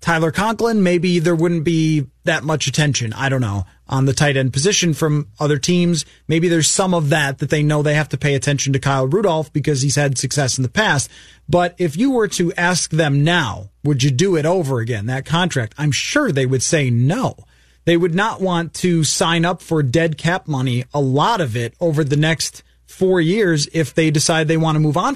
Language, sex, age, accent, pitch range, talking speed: English, male, 30-49, American, 140-175 Hz, 220 wpm